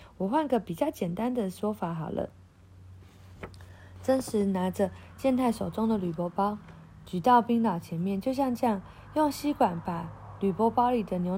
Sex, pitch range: female, 175-235 Hz